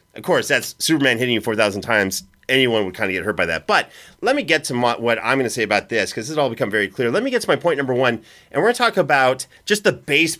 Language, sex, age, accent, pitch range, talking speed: English, male, 30-49, American, 120-155 Hz, 305 wpm